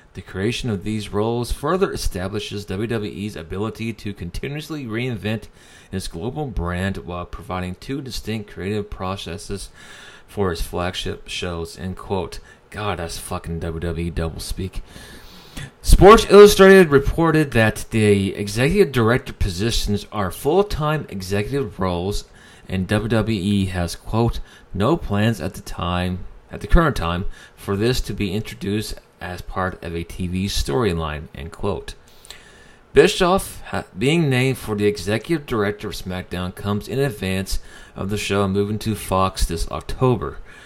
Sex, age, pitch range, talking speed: male, 30-49, 90-110 Hz, 135 wpm